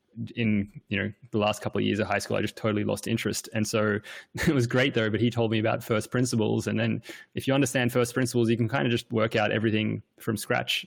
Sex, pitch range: male, 110-120 Hz